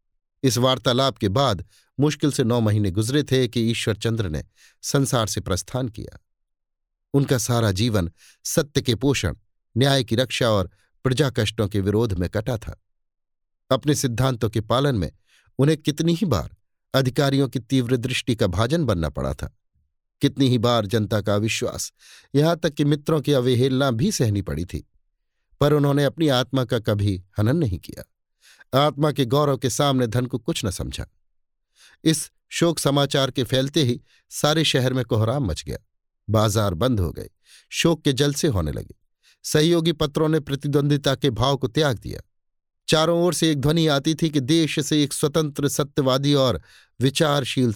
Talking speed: 165 wpm